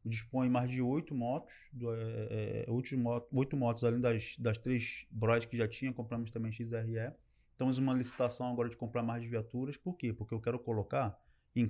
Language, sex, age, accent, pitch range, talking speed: Portuguese, male, 20-39, Brazilian, 120-145 Hz, 170 wpm